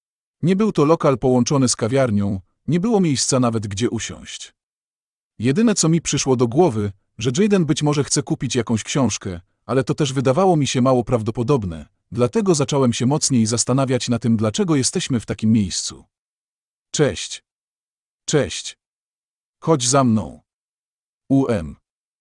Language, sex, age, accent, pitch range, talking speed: Polish, male, 40-59, native, 115-145 Hz, 145 wpm